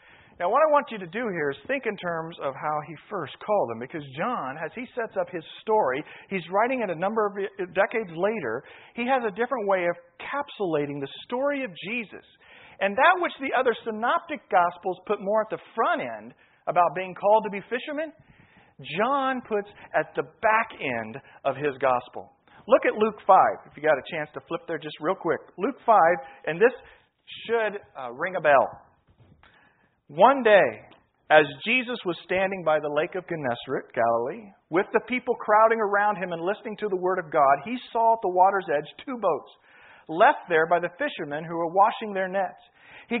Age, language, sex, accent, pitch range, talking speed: 40-59, English, male, American, 165-225 Hz, 195 wpm